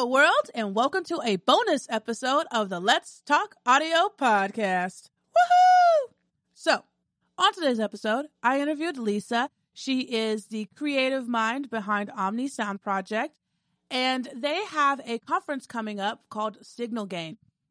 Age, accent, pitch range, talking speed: 30-49, American, 205-265 Hz, 130 wpm